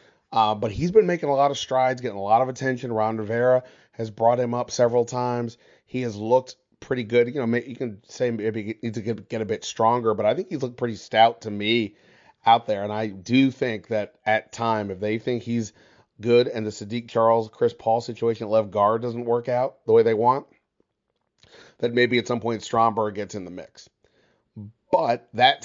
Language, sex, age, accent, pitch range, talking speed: English, male, 30-49, American, 110-130 Hz, 215 wpm